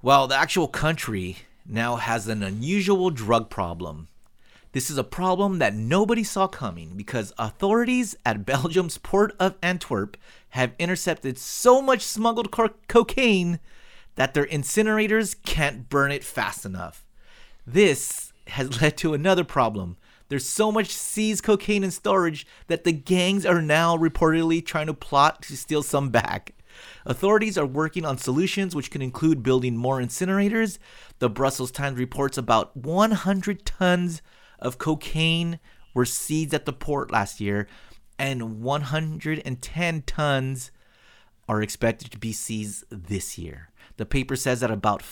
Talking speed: 140 wpm